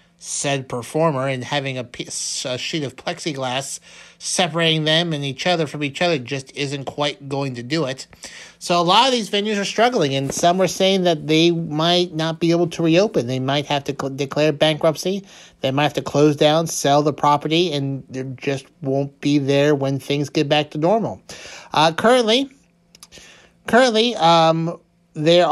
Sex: male